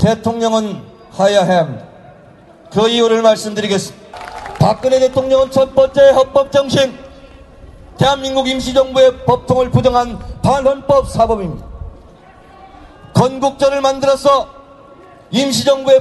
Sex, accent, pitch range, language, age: male, native, 235-270 Hz, Korean, 40-59